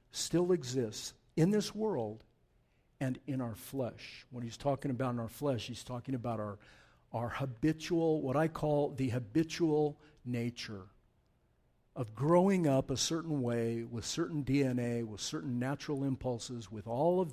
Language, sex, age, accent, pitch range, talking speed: English, male, 50-69, American, 125-165 Hz, 150 wpm